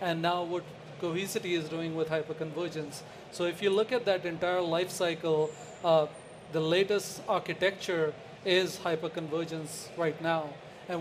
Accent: Indian